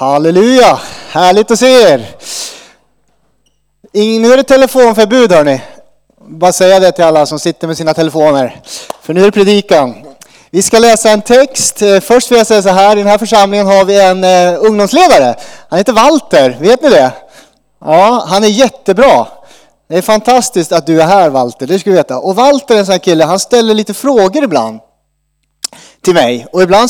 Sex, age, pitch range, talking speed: male, 30-49, 160-220 Hz, 185 wpm